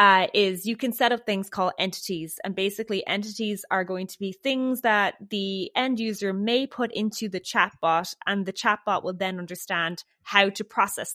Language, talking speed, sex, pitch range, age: English, 190 wpm, female, 180-215 Hz, 20-39